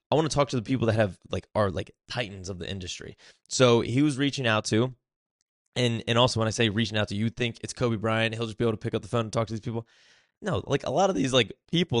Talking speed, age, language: 290 wpm, 20-39, English